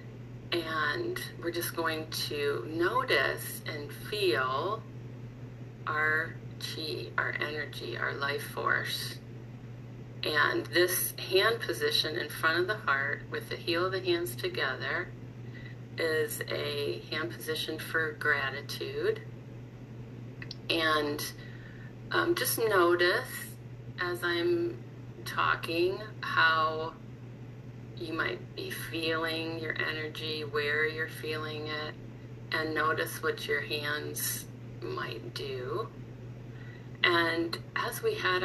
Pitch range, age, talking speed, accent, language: 120-155 Hz, 30-49, 105 wpm, American, English